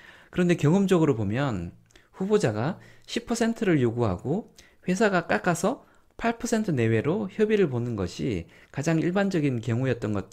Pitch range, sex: 115-175 Hz, male